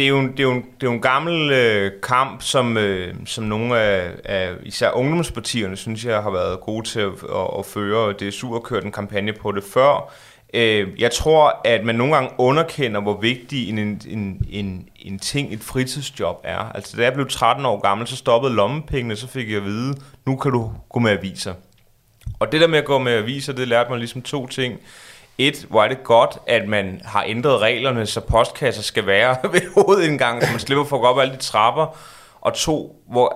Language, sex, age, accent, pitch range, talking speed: Danish, male, 30-49, native, 110-140 Hz, 220 wpm